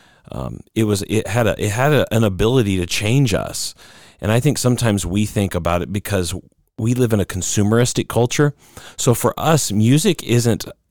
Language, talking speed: English, 185 wpm